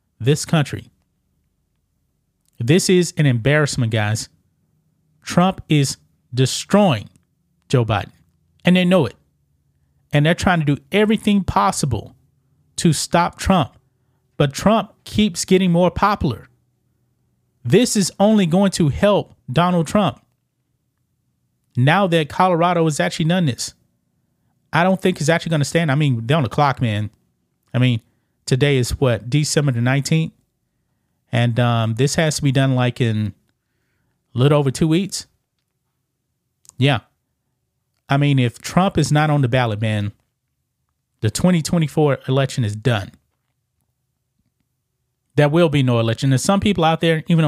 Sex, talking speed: male, 140 wpm